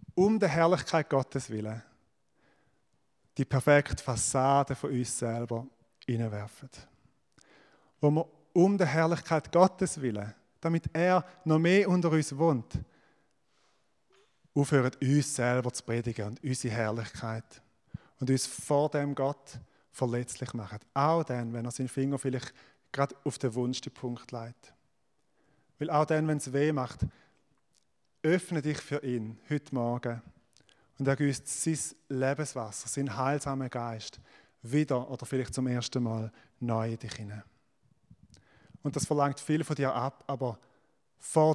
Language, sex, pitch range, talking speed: German, male, 120-150 Hz, 135 wpm